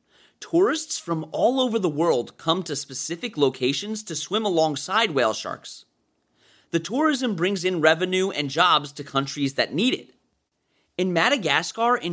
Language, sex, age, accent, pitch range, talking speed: English, male, 30-49, American, 155-235 Hz, 150 wpm